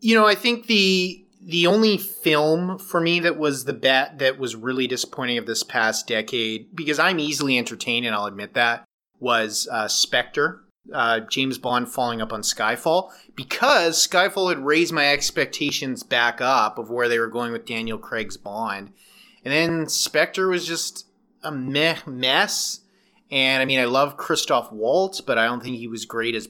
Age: 30-49